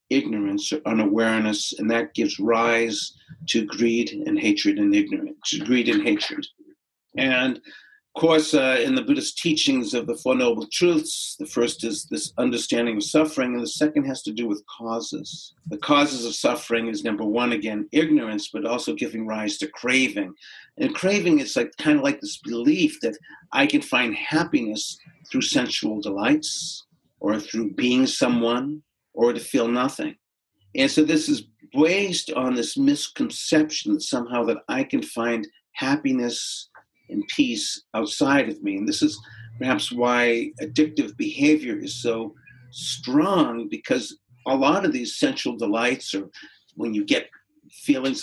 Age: 50-69